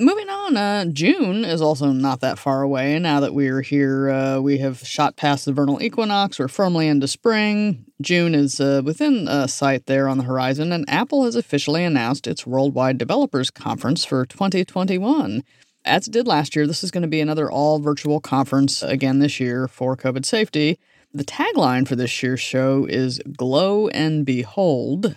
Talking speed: 185 wpm